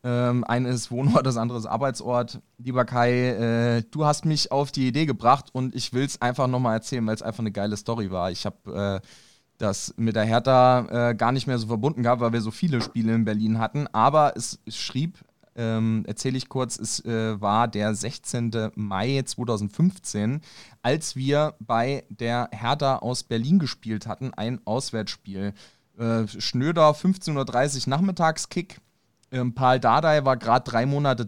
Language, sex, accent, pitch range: German, male, German, 115-135 Hz